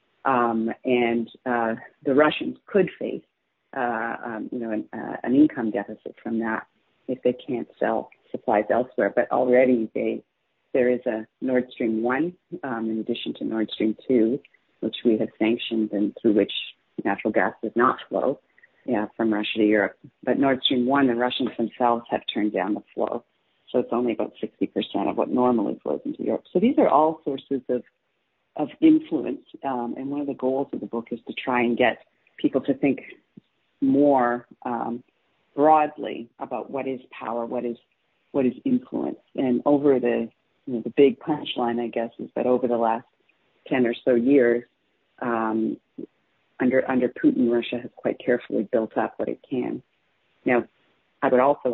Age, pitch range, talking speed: 40-59, 115-135 Hz, 175 wpm